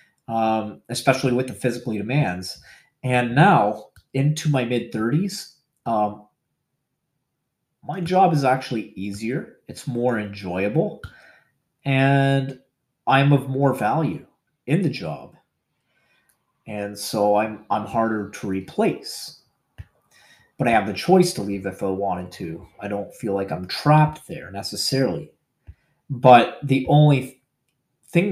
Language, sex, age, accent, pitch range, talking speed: English, male, 30-49, American, 110-150 Hz, 120 wpm